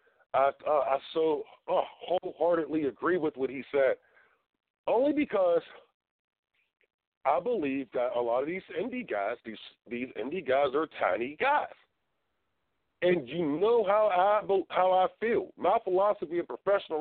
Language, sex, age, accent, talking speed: English, male, 40-59, American, 145 wpm